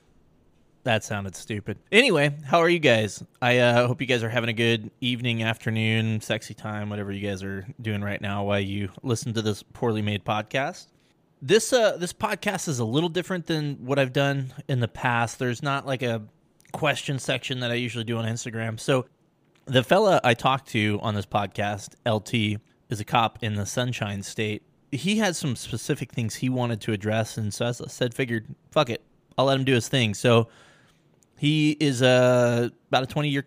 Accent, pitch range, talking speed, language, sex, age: American, 110-135 Hz, 195 wpm, English, male, 20-39